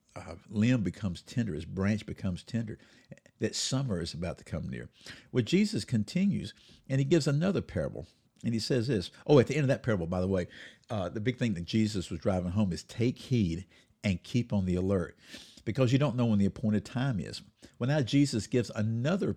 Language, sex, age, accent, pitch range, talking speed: English, male, 50-69, American, 100-135 Hz, 210 wpm